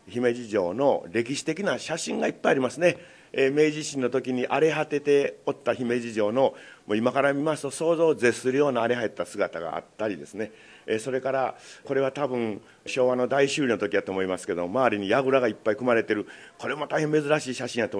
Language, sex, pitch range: Japanese, male, 110-150 Hz